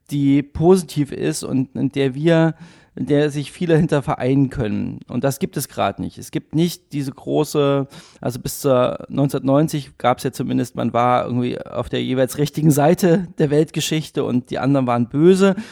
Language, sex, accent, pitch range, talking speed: German, male, German, 130-155 Hz, 185 wpm